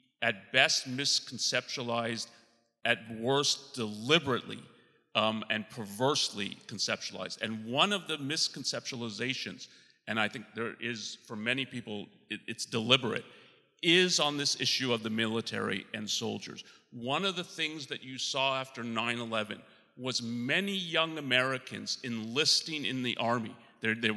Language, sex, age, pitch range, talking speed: English, male, 40-59, 125-150 Hz, 130 wpm